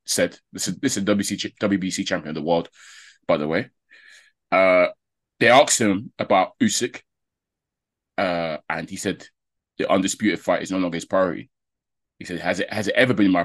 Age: 20-39